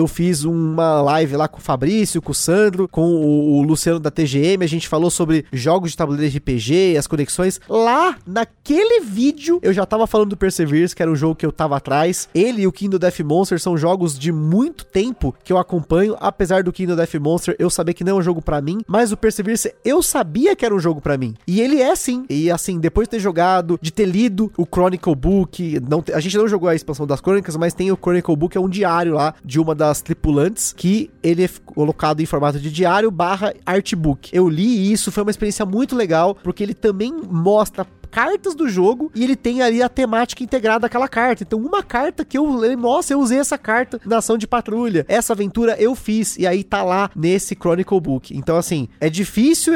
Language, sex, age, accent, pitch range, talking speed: Portuguese, male, 20-39, Brazilian, 165-215 Hz, 225 wpm